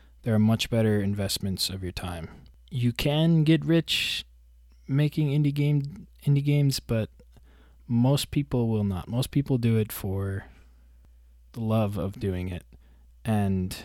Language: English